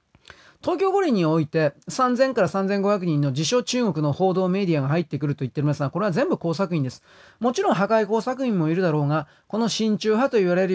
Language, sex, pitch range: Japanese, male, 155-215 Hz